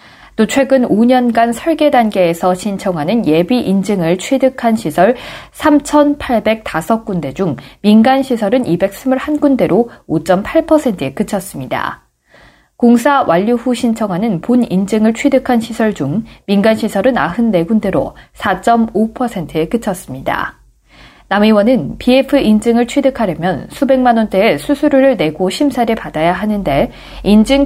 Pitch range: 185-250 Hz